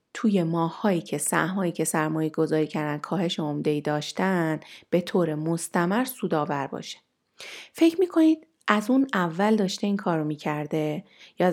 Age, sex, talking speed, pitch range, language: 30-49, female, 140 wpm, 170-220 Hz, Persian